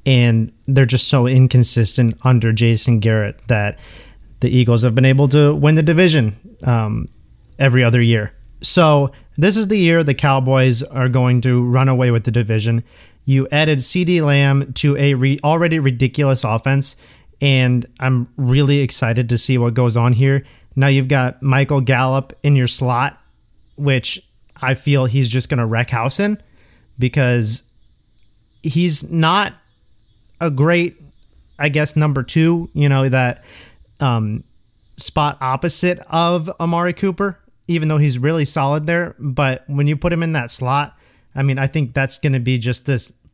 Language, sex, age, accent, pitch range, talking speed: English, male, 30-49, American, 125-150 Hz, 160 wpm